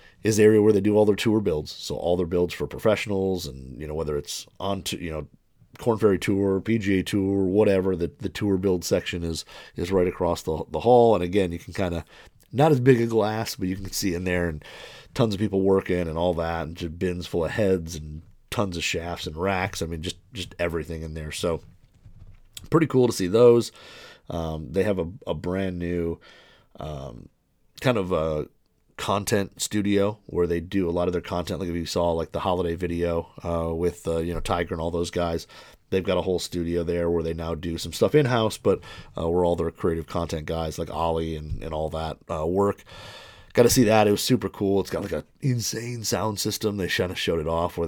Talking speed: 230 wpm